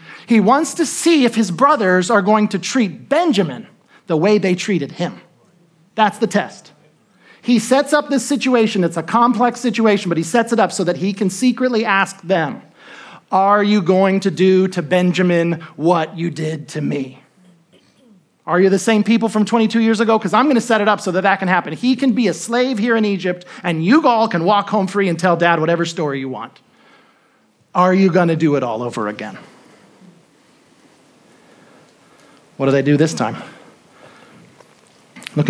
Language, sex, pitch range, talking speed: English, male, 150-210 Hz, 185 wpm